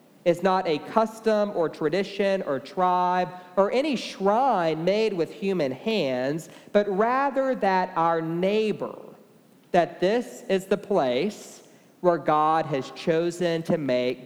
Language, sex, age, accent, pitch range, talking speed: English, male, 40-59, American, 160-200 Hz, 130 wpm